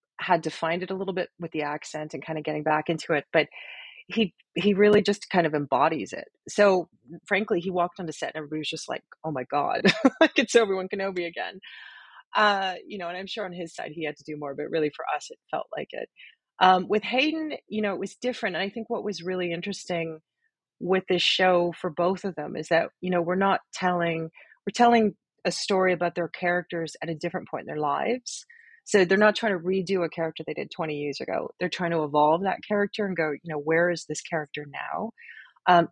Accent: American